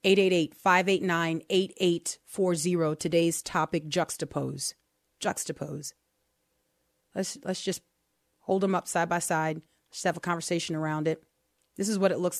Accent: American